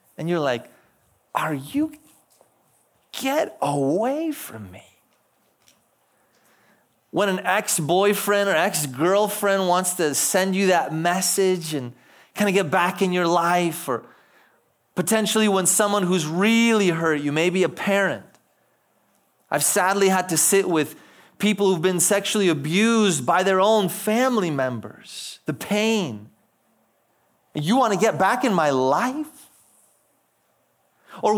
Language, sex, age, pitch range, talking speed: English, male, 30-49, 175-220 Hz, 125 wpm